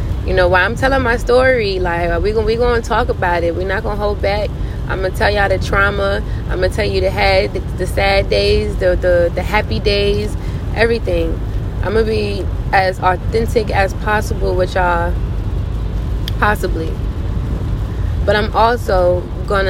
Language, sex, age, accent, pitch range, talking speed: English, female, 20-39, American, 90-105 Hz, 180 wpm